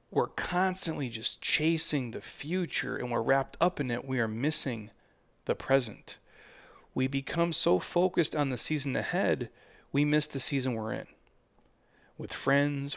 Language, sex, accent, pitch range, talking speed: English, male, American, 120-150 Hz, 155 wpm